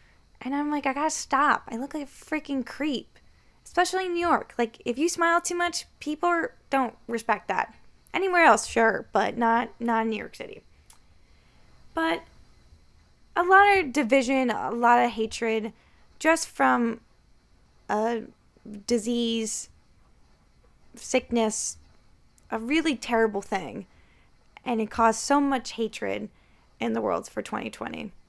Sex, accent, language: female, American, English